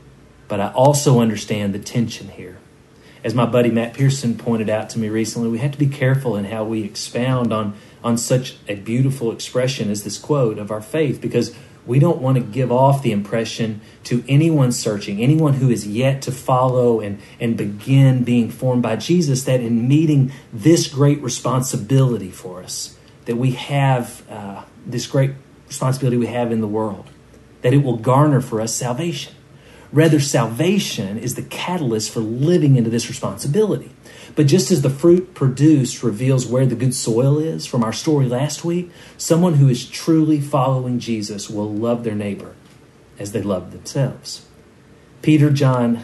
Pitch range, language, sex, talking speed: 110-135 Hz, English, male, 175 wpm